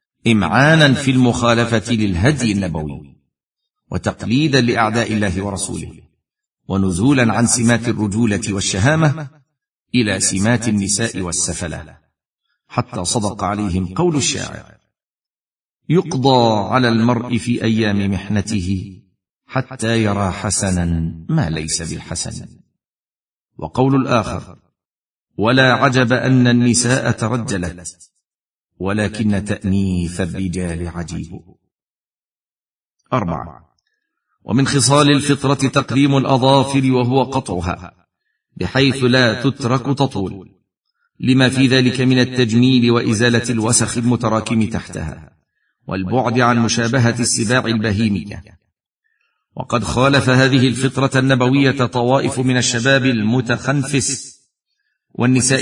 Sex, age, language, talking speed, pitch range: male, 50-69, Arabic, 90 wpm, 100-130 Hz